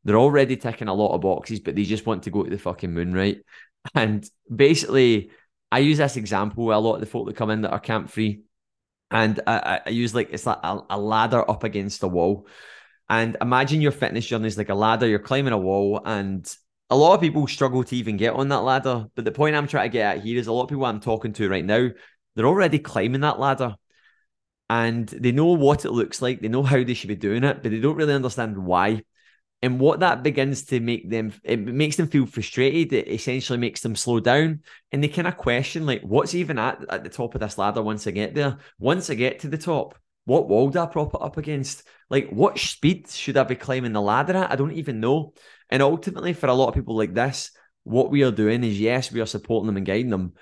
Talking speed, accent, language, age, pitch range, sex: 250 wpm, British, English, 20-39, 110-140 Hz, male